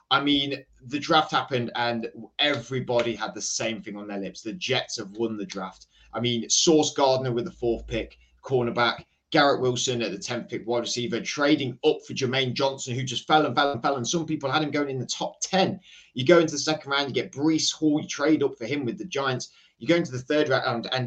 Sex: male